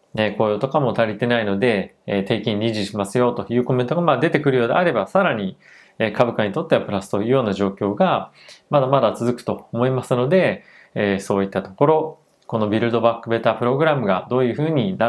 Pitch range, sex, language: 105-140 Hz, male, Japanese